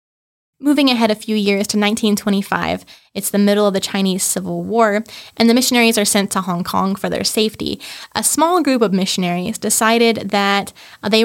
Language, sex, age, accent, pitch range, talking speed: English, female, 20-39, American, 195-235 Hz, 180 wpm